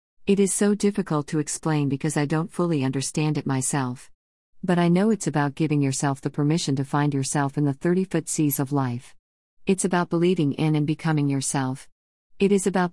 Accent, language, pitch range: American, English, 135-160 Hz